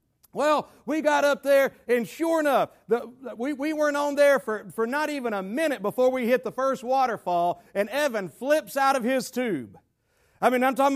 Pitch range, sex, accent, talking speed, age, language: 235-285 Hz, male, American, 195 wpm, 40-59, English